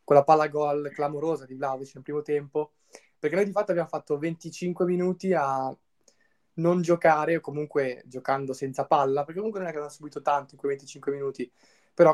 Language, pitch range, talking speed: Italian, 135-155 Hz, 195 wpm